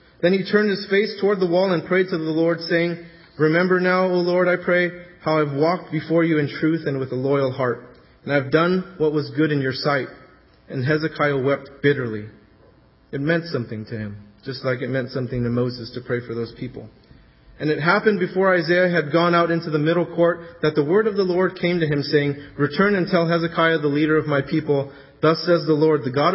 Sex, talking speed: male, 225 wpm